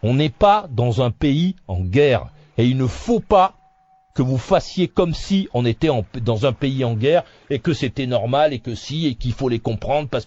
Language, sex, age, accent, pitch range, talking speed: French, male, 40-59, French, 120-160 Hz, 220 wpm